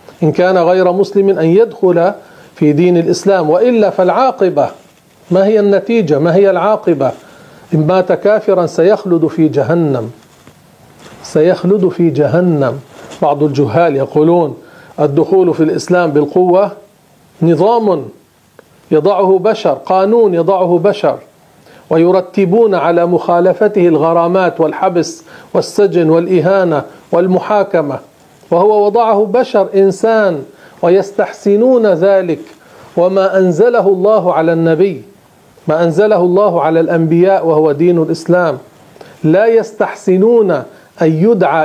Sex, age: male, 40-59